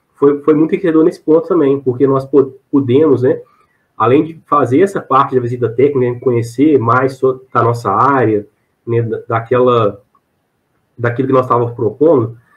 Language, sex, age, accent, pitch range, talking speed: Portuguese, male, 20-39, Brazilian, 120-135 Hz, 160 wpm